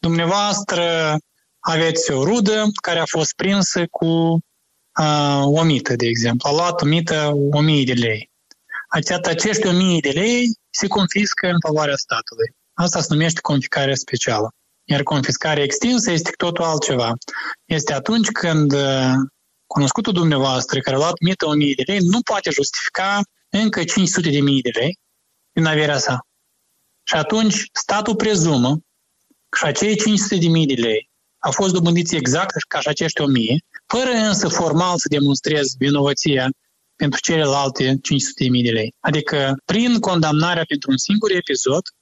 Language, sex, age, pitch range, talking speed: Romanian, male, 20-39, 140-180 Hz, 145 wpm